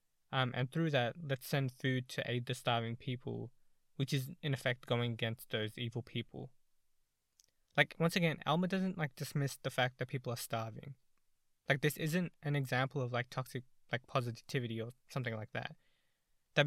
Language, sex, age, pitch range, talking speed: English, male, 20-39, 125-150 Hz, 175 wpm